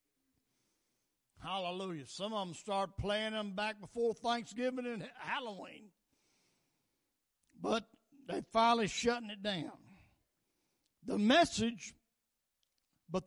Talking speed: 95 wpm